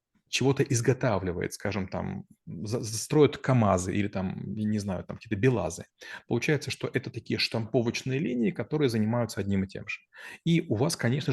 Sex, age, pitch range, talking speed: male, 30-49, 105-135 Hz, 160 wpm